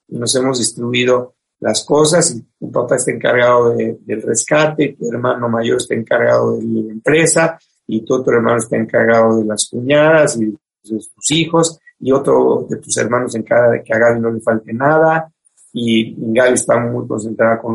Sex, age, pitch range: male, 50-69, 120-165 Hz